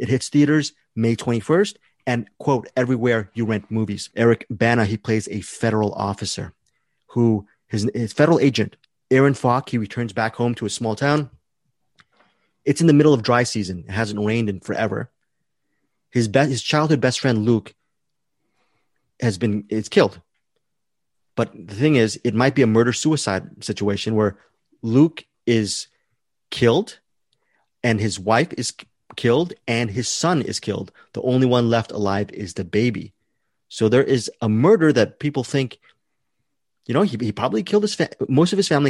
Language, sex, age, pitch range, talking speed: English, male, 30-49, 110-140 Hz, 165 wpm